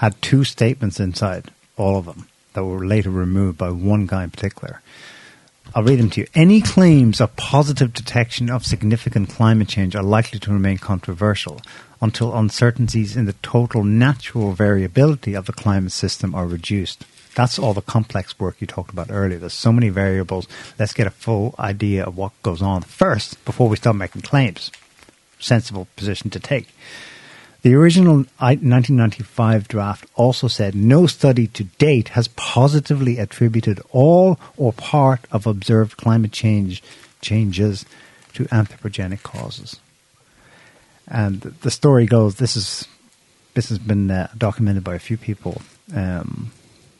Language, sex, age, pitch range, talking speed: English, male, 50-69, 100-125 Hz, 155 wpm